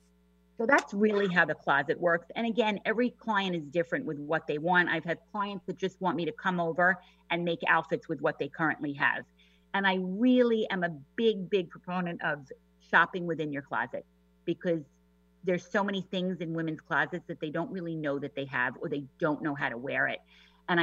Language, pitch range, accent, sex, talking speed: English, 155-220 Hz, American, female, 210 wpm